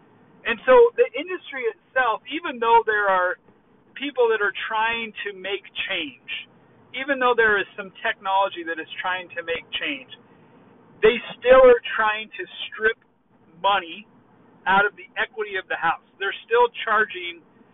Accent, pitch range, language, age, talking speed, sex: American, 175-235 Hz, English, 40-59, 150 wpm, male